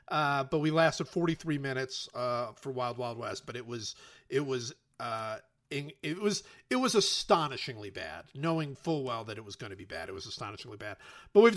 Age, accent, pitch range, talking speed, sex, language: 50-69, American, 130-175 Hz, 195 wpm, male, English